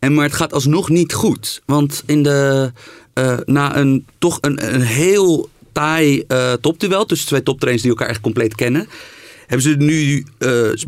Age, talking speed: 40-59, 175 wpm